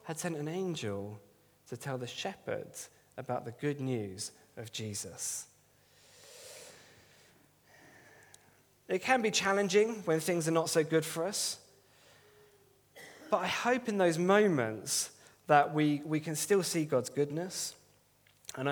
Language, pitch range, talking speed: English, 130-190 Hz, 130 wpm